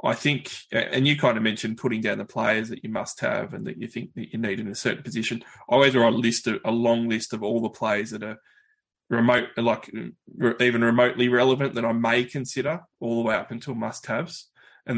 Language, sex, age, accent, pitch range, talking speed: English, male, 20-39, Australian, 115-135 Hz, 230 wpm